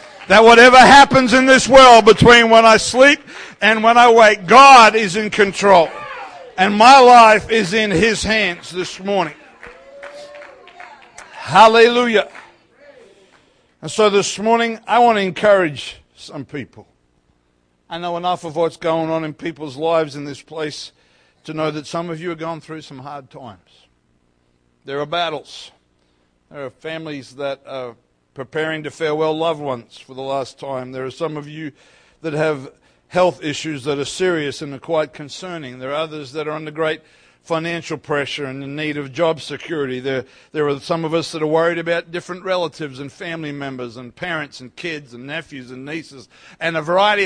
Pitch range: 135-185 Hz